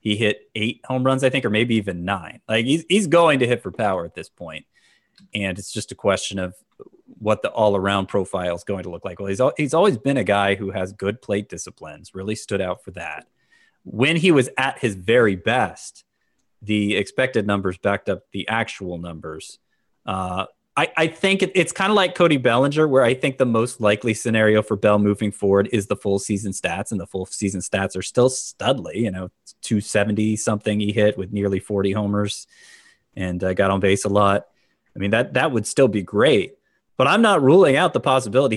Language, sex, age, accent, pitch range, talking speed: English, male, 30-49, American, 95-120 Hz, 210 wpm